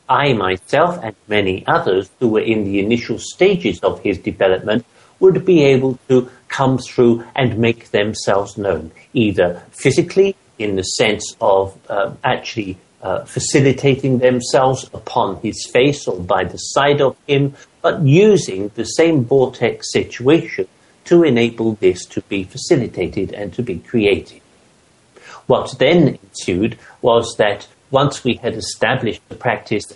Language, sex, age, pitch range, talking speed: English, male, 60-79, 100-140 Hz, 140 wpm